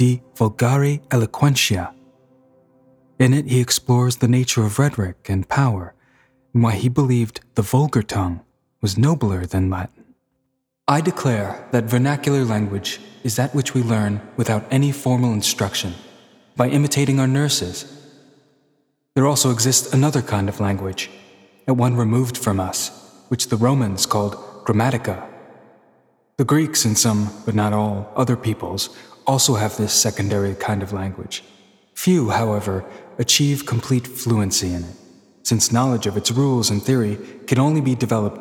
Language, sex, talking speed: English, male, 145 wpm